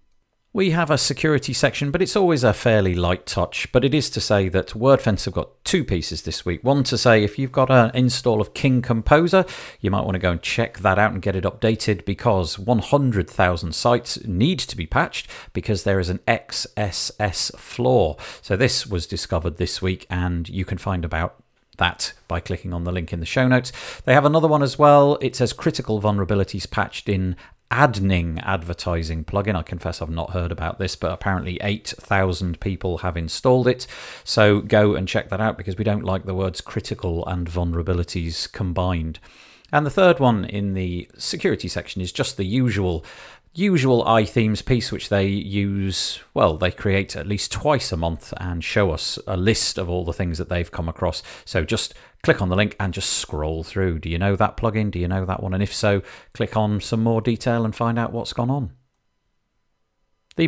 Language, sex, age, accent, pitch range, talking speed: English, male, 40-59, British, 90-120 Hz, 200 wpm